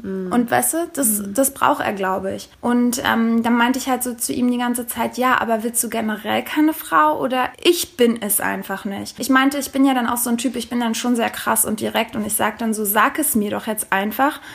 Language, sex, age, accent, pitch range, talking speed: German, female, 20-39, German, 230-280 Hz, 260 wpm